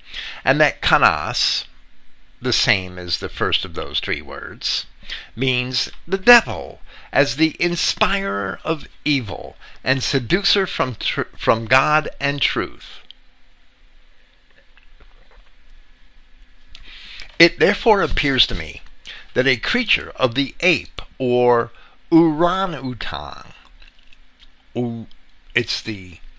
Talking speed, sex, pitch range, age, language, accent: 100 wpm, male, 90-140 Hz, 50-69, English, American